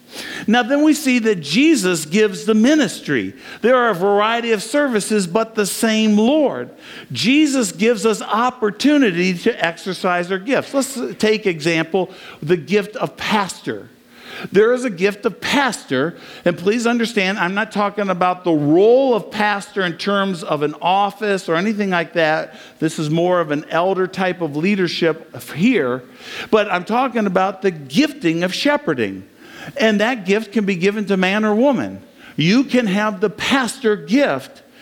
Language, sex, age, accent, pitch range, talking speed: English, male, 50-69, American, 175-230 Hz, 160 wpm